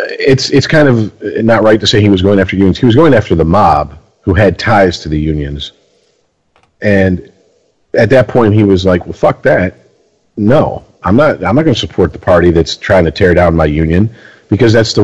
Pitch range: 90-110 Hz